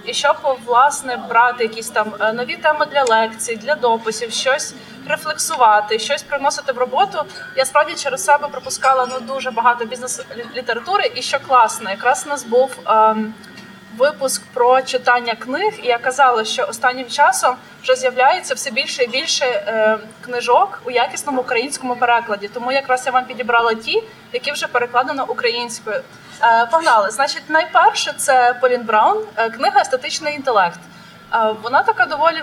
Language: Ukrainian